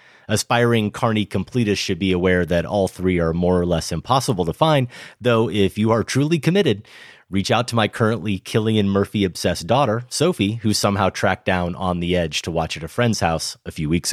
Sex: male